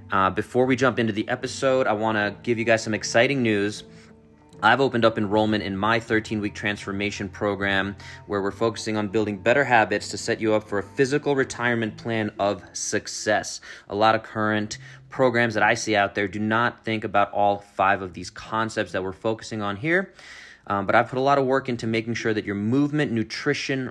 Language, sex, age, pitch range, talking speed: English, male, 30-49, 100-120 Hz, 205 wpm